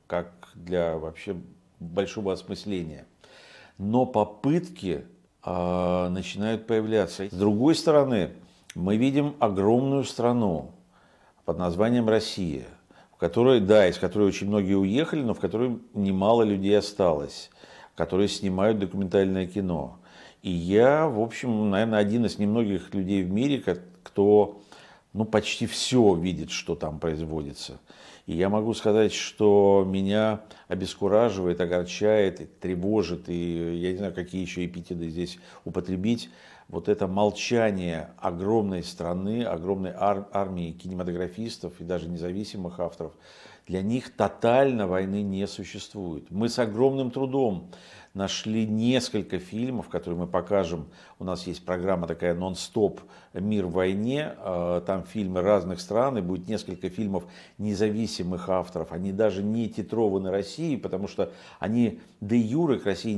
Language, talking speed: Russian, 125 wpm